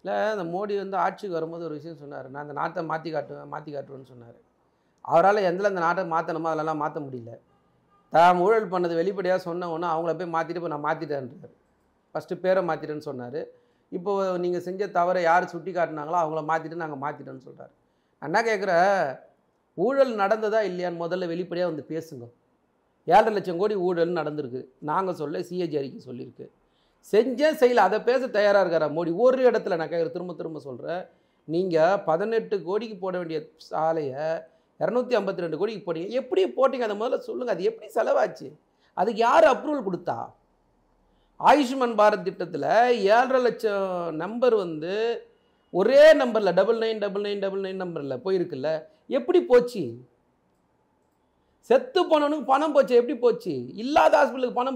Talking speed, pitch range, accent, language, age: 140 wpm, 160-225 Hz, native, Tamil, 40-59